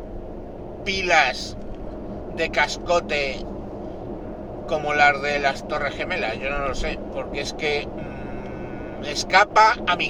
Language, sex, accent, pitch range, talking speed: Spanish, male, Spanish, 135-170 Hz, 120 wpm